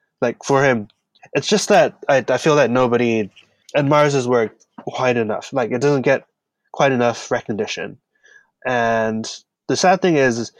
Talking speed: 160 wpm